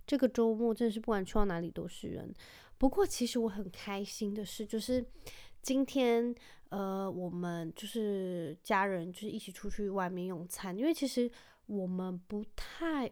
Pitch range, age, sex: 180-230 Hz, 20-39, female